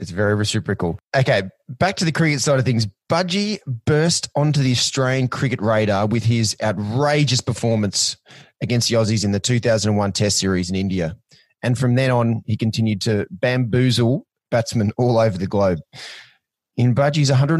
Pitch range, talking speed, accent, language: 105-130 Hz, 175 wpm, Australian, English